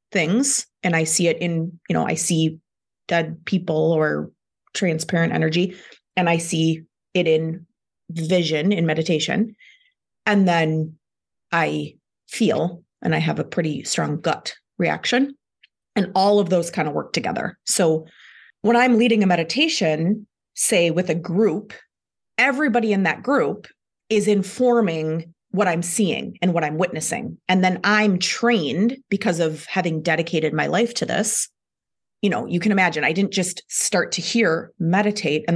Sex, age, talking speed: female, 30-49, 155 wpm